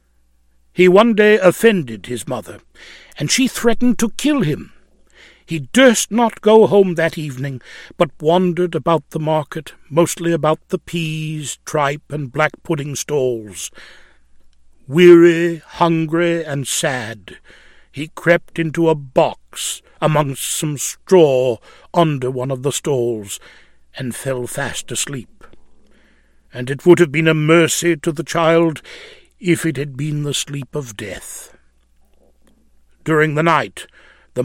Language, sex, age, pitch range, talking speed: English, male, 60-79, 135-180 Hz, 130 wpm